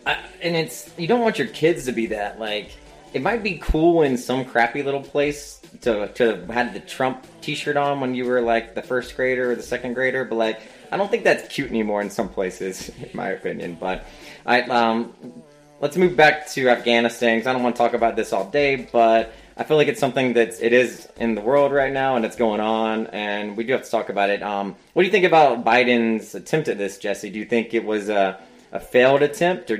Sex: male